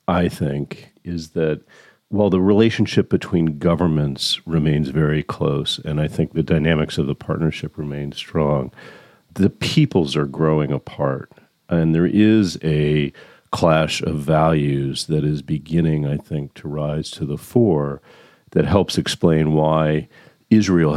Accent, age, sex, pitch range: American, 50-69, male, 75-85 Hz